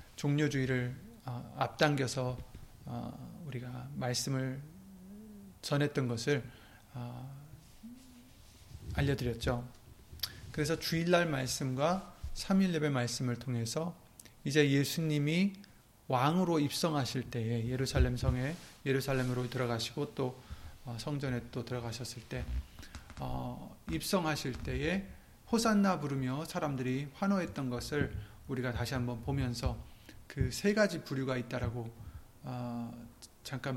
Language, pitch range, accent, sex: Korean, 120-155 Hz, native, male